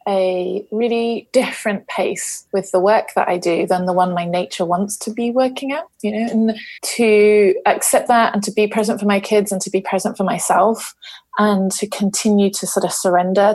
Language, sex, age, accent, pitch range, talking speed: English, female, 20-39, British, 190-255 Hz, 205 wpm